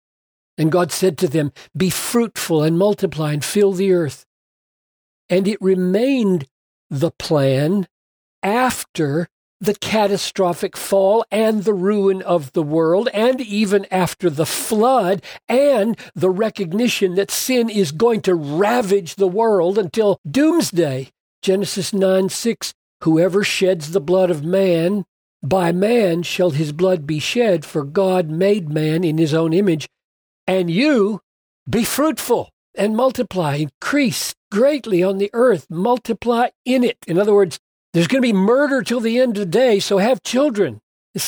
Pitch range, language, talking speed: 175-220 Hz, English, 145 wpm